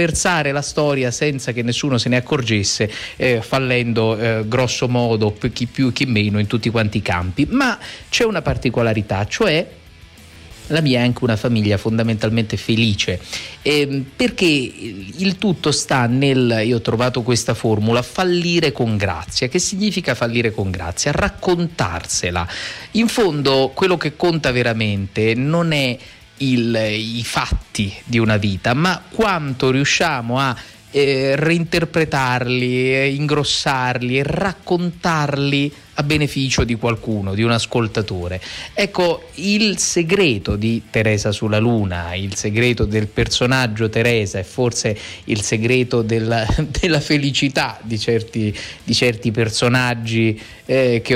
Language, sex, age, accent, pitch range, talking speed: Italian, male, 30-49, native, 110-145 Hz, 130 wpm